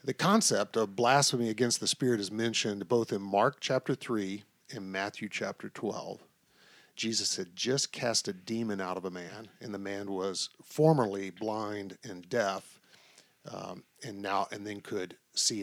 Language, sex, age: English, male, 40-59